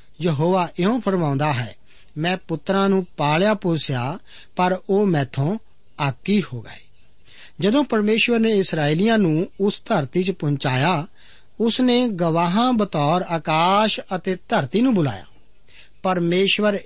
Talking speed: 110 wpm